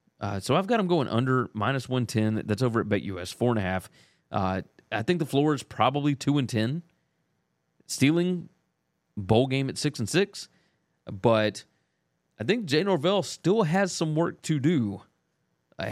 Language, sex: English, male